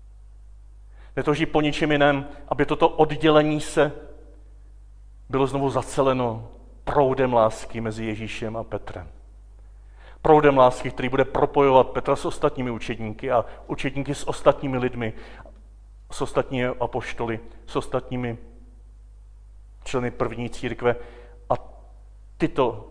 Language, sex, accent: Czech, male, native